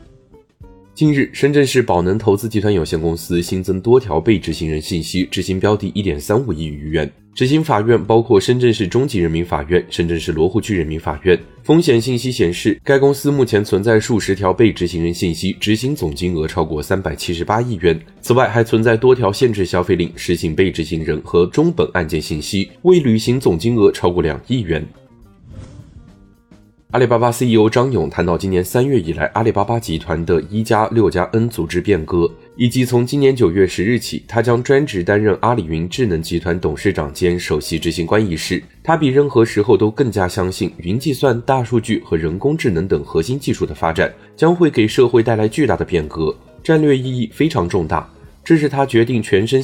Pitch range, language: 90-125 Hz, Chinese